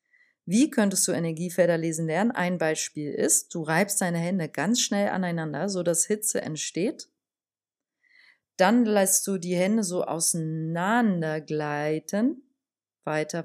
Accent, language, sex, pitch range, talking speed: German, German, female, 165-210 Hz, 130 wpm